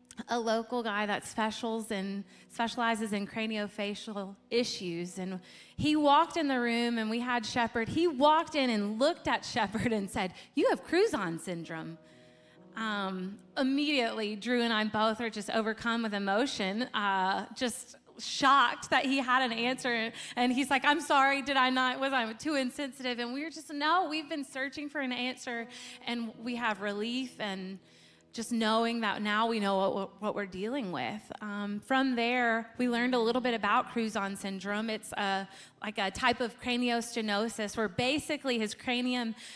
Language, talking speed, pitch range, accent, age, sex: English, 170 wpm, 205-250 Hz, American, 20-39, female